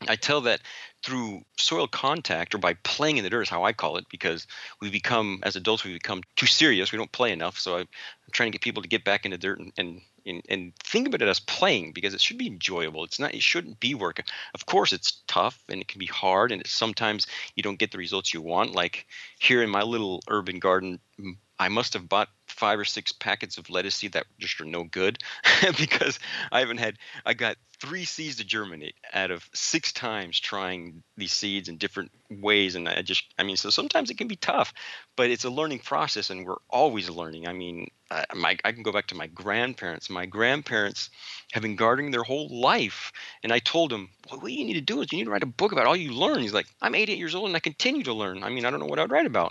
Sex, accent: male, American